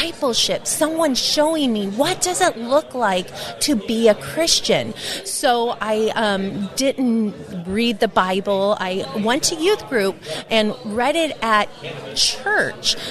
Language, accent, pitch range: English, American, 210-270 Hz